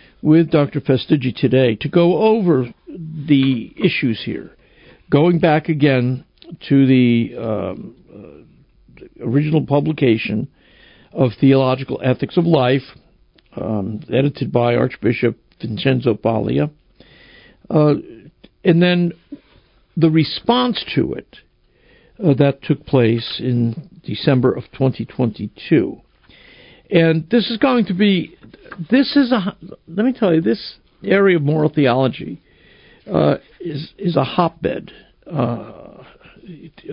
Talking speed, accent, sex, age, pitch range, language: 110 wpm, American, male, 60-79, 130-165 Hz, English